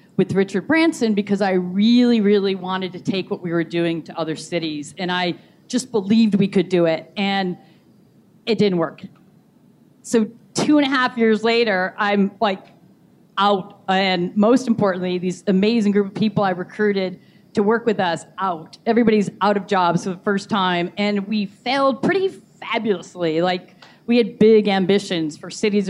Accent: American